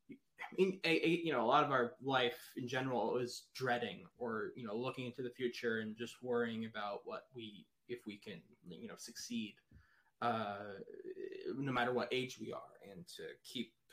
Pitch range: 120-150 Hz